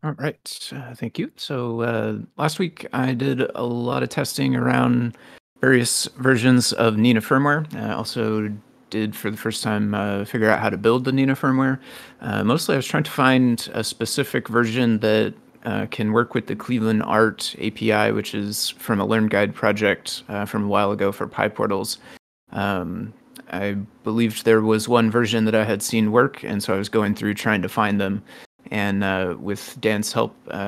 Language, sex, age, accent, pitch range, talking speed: English, male, 30-49, American, 100-120 Hz, 190 wpm